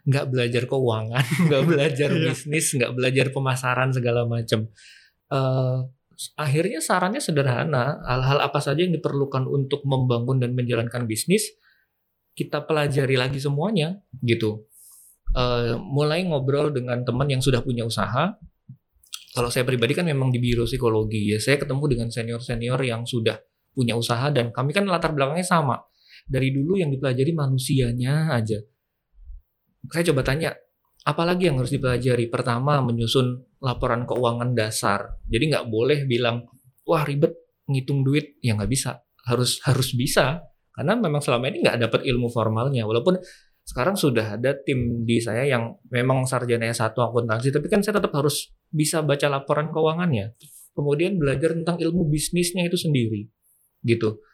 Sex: male